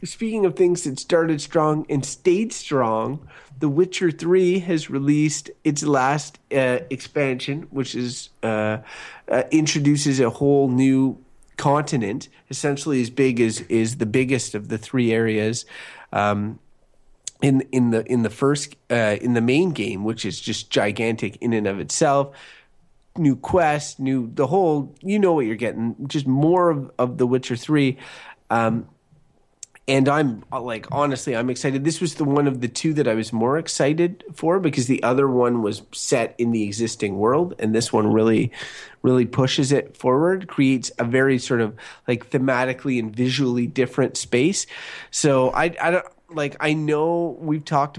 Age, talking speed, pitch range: 30-49, 165 wpm, 120-155 Hz